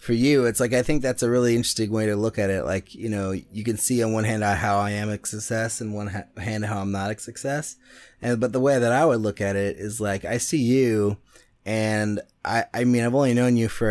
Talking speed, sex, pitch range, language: 265 wpm, male, 105-125 Hz, English